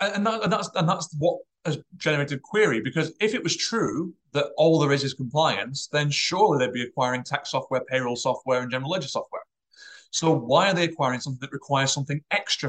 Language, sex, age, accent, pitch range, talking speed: English, male, 30-49, British, 130-160 Hz, 210 wpm